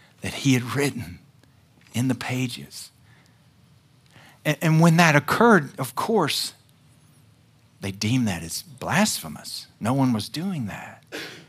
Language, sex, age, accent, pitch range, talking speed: English, male, 50-69, American, 125-165 Hz, 125 wpm